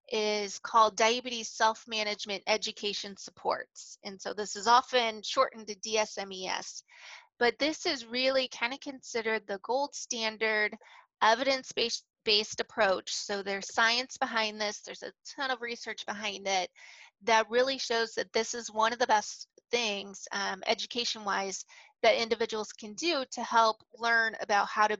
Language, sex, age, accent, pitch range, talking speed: English, female, 20-39, American, 205-240 Hz, 155 wpm